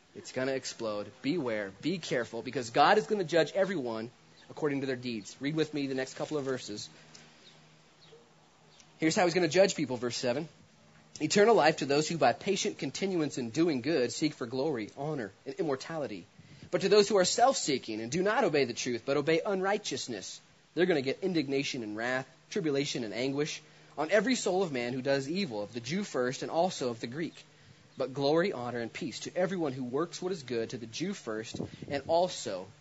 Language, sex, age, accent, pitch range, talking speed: English, male, 30-49, American, 130-175 Hz, 205 wpm